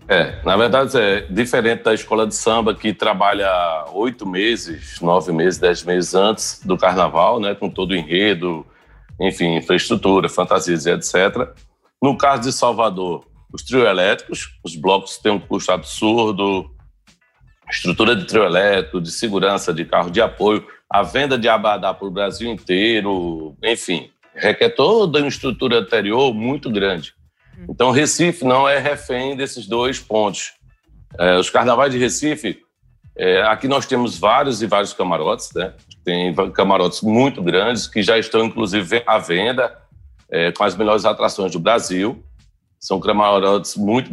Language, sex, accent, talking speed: English, male, Brazilian, 150 wpm